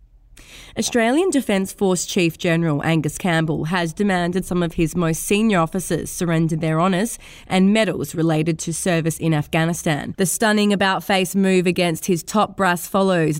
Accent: Australian